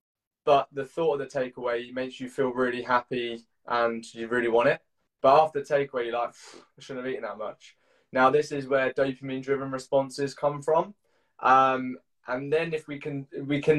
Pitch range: 125-145 Hz